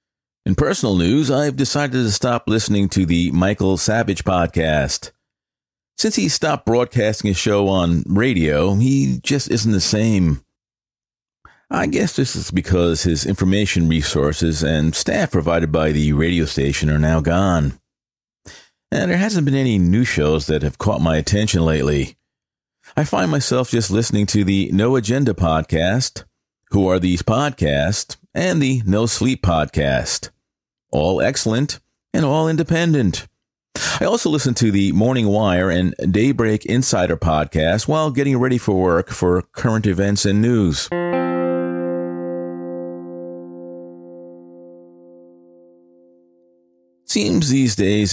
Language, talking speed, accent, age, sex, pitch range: English, 130 wpm, American, 40-59, male, 85-110 Hz